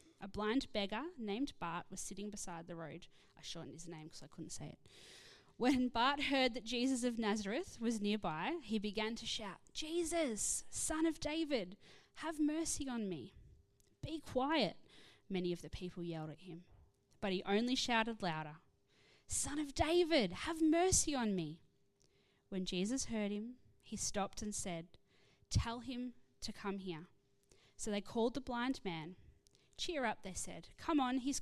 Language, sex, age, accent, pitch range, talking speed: English, female, 20-39, Australian, 175-245 Hz, 165 wpm